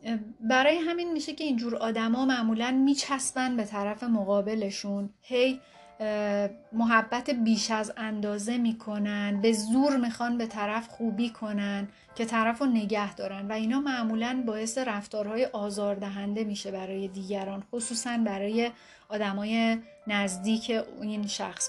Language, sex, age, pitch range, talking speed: Persian, female, 30-49, 205-235 Hz, 125 wpm